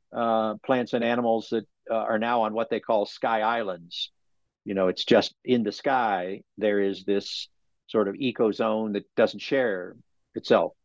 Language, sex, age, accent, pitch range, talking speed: English, male, 50-69, American, 105-120 Hz, 170 wpm